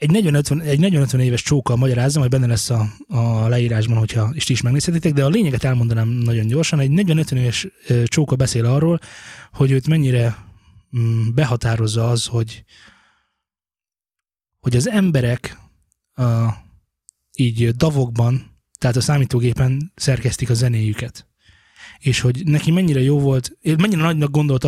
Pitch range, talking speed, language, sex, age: 120-145 Hz, 145 wpm, Hungarian, male, 20-39